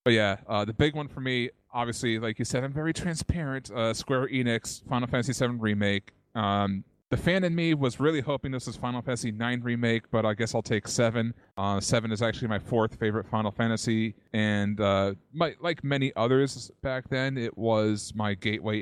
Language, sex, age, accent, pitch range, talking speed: English, male, 30-49, American, 105-125 Hz, 200 wpm